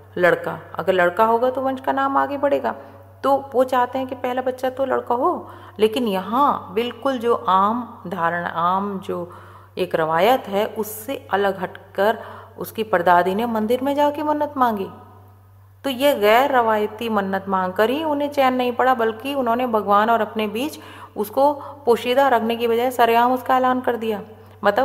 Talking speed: 125 wpm